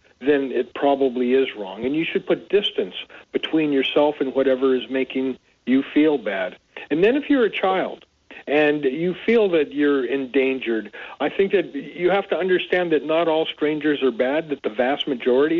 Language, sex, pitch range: English, male, 130-165 Hz